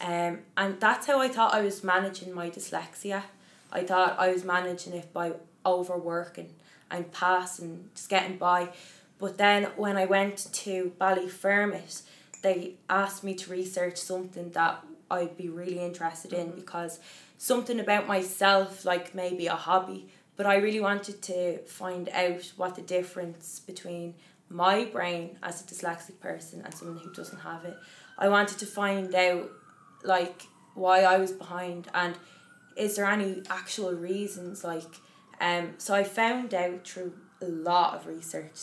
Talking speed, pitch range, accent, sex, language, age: 160 wpm, 175-190 Hz, Irish, female, English, 20-39